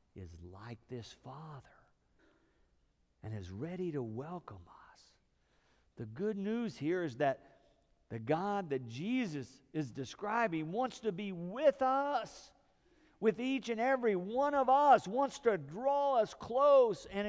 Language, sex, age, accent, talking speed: English, male, 50-69, American, 140 wpm